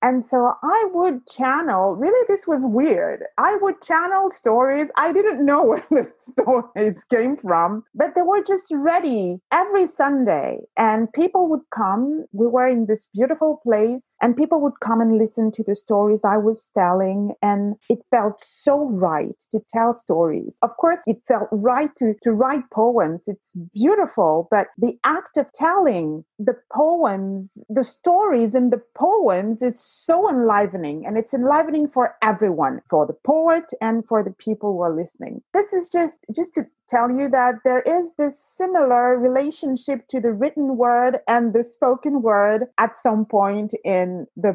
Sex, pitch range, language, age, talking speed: female, 200-275 Hz, English, 30-49, 170 wpm